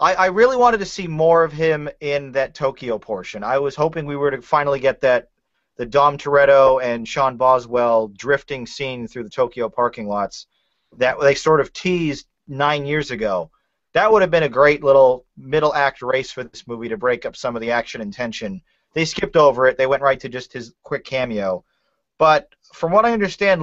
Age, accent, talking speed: 40-59, American, 205 wpm